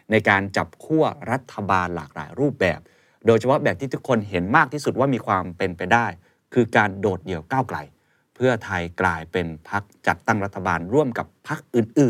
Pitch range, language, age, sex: 90-115 Hz, Thai, 30-49, male